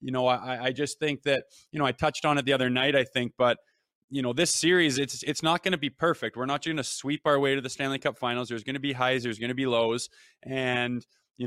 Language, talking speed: English, 285 wpm